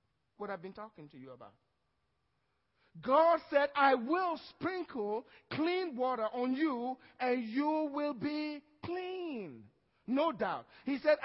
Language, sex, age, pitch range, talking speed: English, male, 50-69, 225-335 Hz, 135 wpm